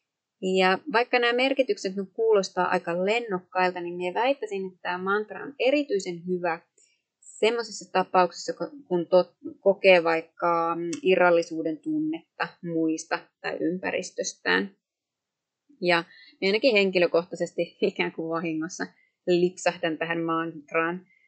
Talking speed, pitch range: 100 wpm, 175-245 Hz